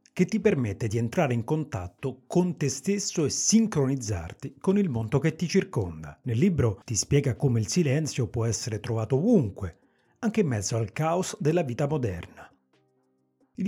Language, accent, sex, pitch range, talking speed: Italian, native, male, 110-165 Hz, 165 wpm